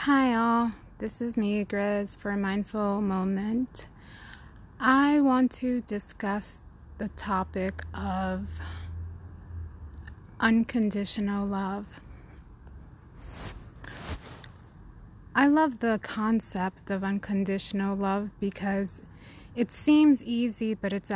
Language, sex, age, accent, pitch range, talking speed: English, female, 20-39, American, 180-215 Hz, 90 wpm